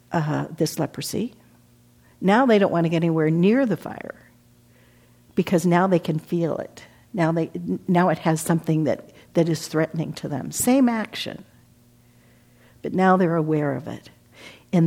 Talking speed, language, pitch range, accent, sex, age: 155 wpm, English, 145-195 Hz, American, female, 60-79